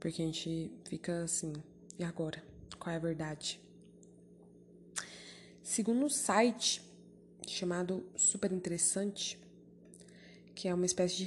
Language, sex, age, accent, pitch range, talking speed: Portuguese, female, 20-39, Brazilian, 180-215 Hz, 115 wpm